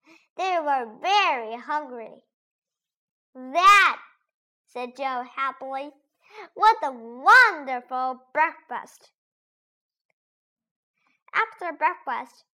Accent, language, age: American, Chinese, 10-29